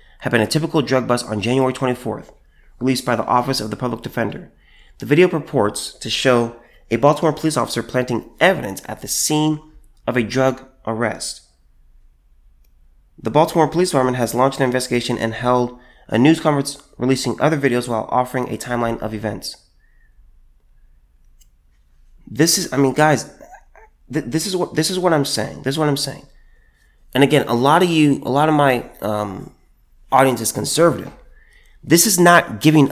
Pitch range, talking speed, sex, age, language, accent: 115-155 Hz, 170 wpm, male, 30-49, English, American